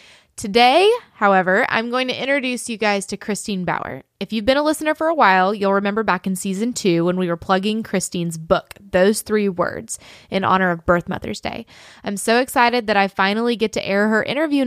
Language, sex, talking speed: English, female, 210 wpm